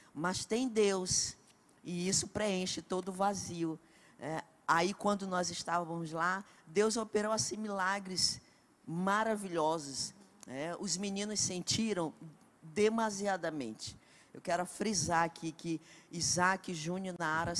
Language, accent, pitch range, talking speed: Portuguese, Brazilian, 170-205 Hz, 115 wpm